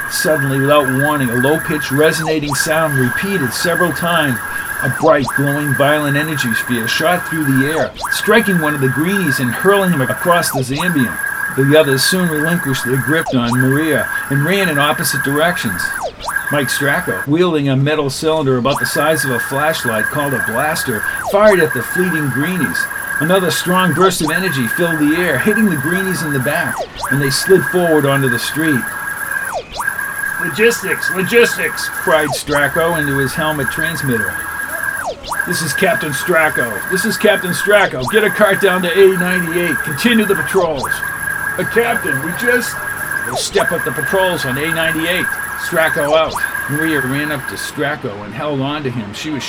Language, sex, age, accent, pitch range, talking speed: English, male, 50-69, American, 140-185 Hz, 160 wpm